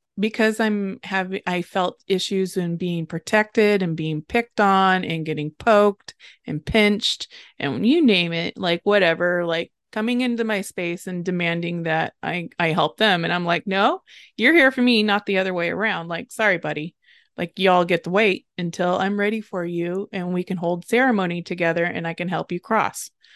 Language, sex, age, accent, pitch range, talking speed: English, female, 20-39, American, 175-210 Hz, 190 wpm